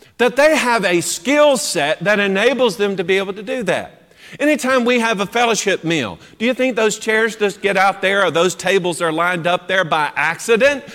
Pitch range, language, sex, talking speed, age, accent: 160-230 Hz, English, male, 215 wpm, 40-59, American